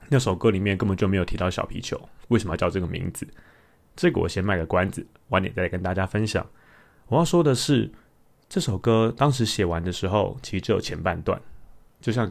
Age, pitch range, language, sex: 20-39, 95-120 Hz, Chinese, male